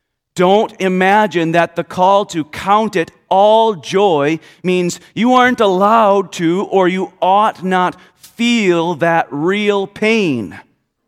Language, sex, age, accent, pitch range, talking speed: English, male, 40-59, American, 125-190 Hz, 125 wpm